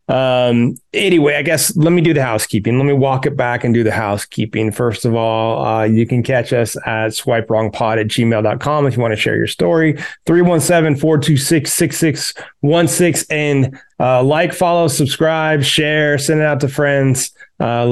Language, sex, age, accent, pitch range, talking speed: English, male, 30-49, American, 110-145 Hz, 175 wpm